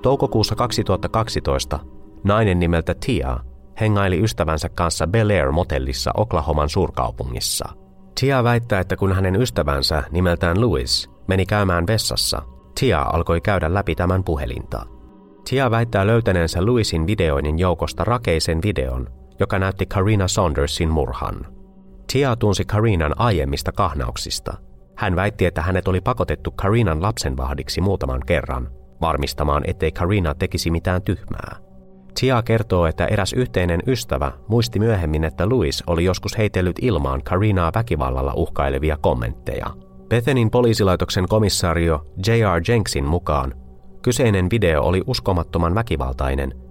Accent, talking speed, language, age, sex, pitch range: native, 120 wpm, Finnish, 30-49, male, 75-105 Hz